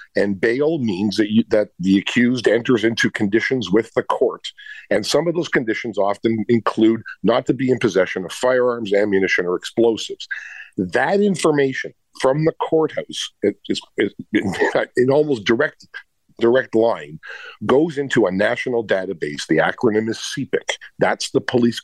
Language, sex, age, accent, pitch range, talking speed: English, male, 50-69, American, 110-145 Hz, 160 wpm